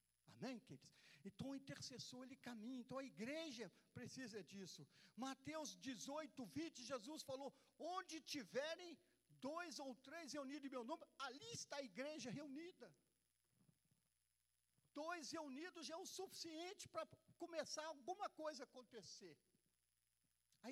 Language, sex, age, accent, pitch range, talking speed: Portuguese, male, 50-69, Brazilian, 180-290 Hz, 120 wpm